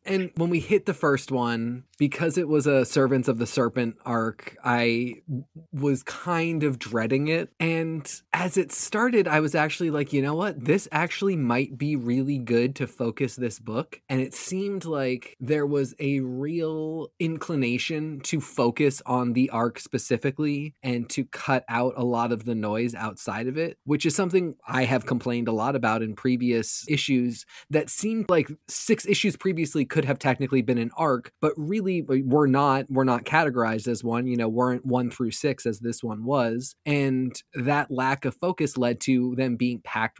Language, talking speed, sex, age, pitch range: English, 185 wpm, male, 20-39, 125-155 Hz